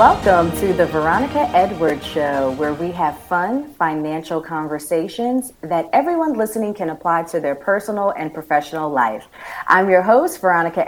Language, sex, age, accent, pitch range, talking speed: English, female, 30-49, American, 155-200 Hz, 150 wpm